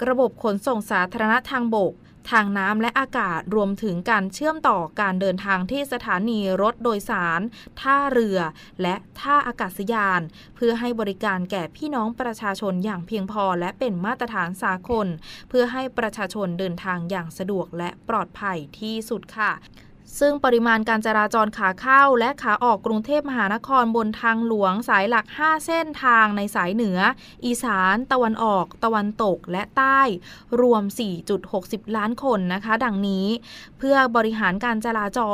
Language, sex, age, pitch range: Thai, female, 20-39, 195-240 Hz